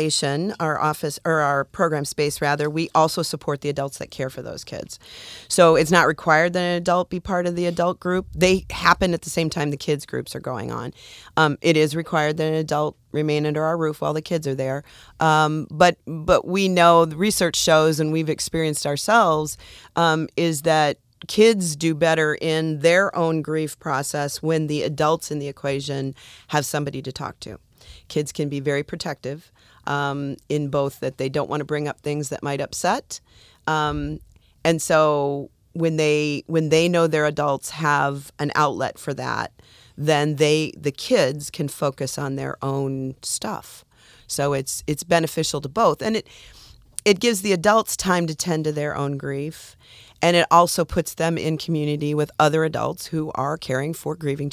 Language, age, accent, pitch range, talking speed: English, 40-59, American, 145-165 Hz, 185 wpm